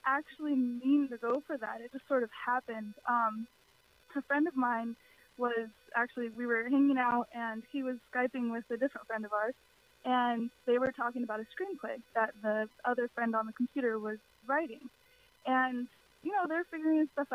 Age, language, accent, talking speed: 20-39, English, American, 185 wpm